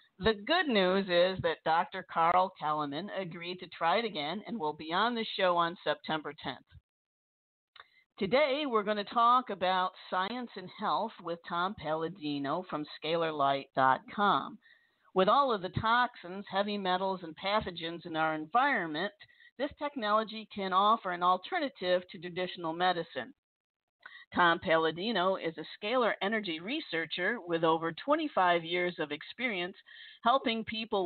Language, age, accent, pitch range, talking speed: English, 50-69, American, 155-210 Hz, 140 wpm